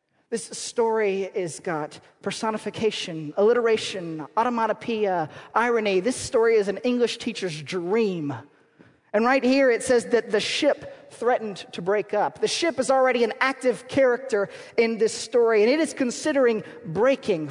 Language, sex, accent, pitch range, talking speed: English, male, American, 175-235 Hz, 145 wpm